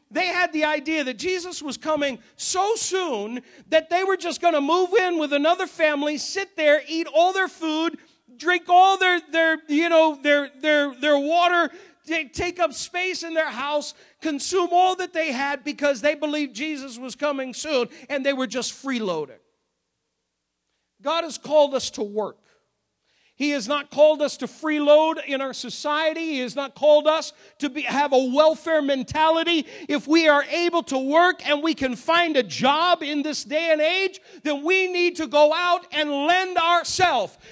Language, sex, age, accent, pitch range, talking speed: English, male, 50-69, American, 255-330 Hz, 180 wpm